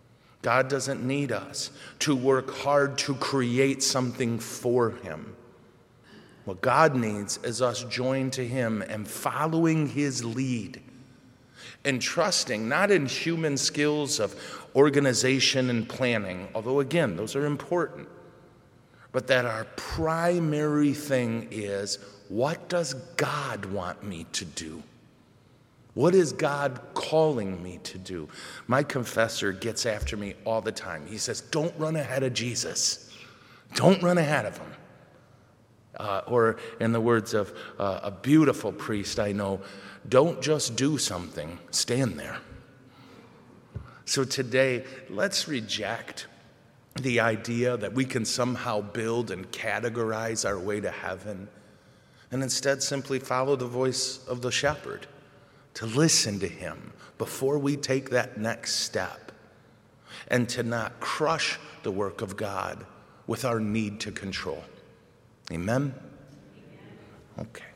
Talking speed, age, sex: 130 wpm, 50-69, male